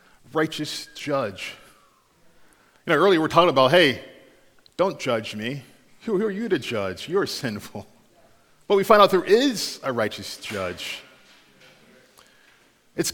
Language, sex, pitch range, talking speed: English, male, 140-185 Hz, 130 wpm